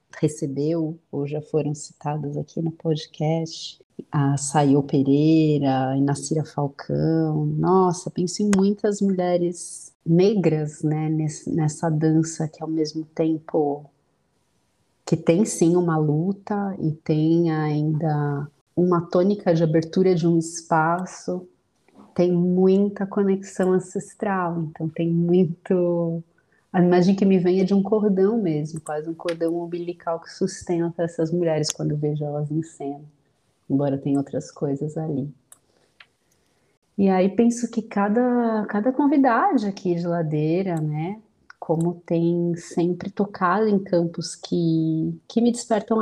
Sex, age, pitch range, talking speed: female, 30-49, 155-185 Hz, 130 wpm